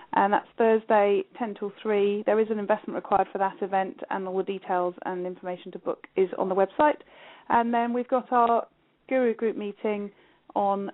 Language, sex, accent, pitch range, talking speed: English, female, British, 190-220 Hz, 190 wpm